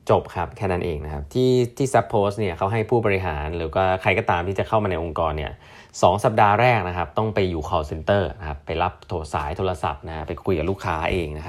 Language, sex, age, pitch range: Thai, male, 20-39, 90-115 Hz